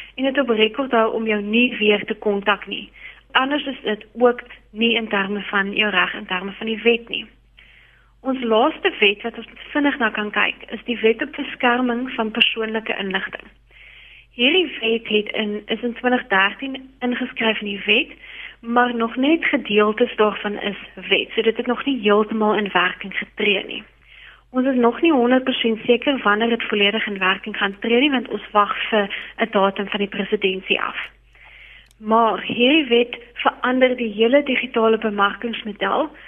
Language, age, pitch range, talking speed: English, 30-49, 210-255 Hz, 170 wpm